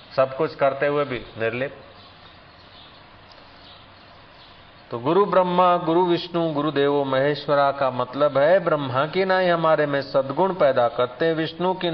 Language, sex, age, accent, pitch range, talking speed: Hindi, male, 50-69, native, 130-170 Hz, 135 wpm